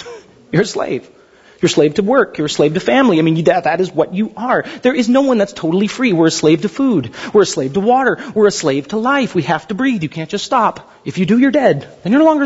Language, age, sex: English, 30-49, male